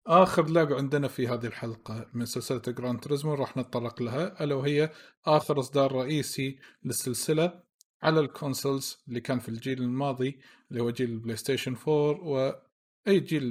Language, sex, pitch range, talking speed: Arabic, male, 120-150 Hz, 150 wpm